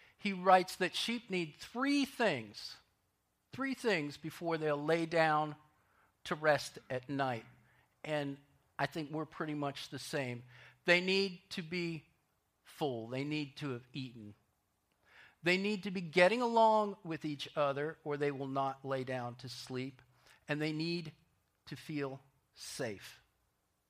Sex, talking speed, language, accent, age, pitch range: male, 145 wpm, English, American, 50-69, 125-160 Hz